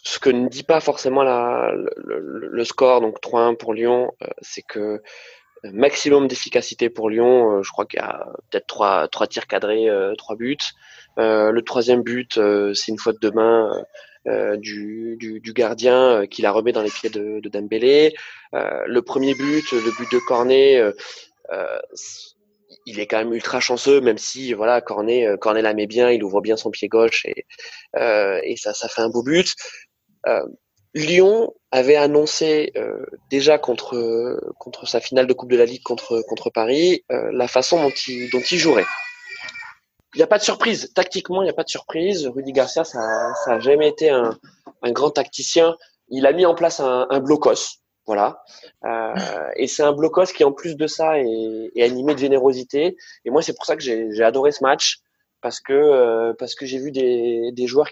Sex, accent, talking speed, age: male, French, 200 wpm, 20-39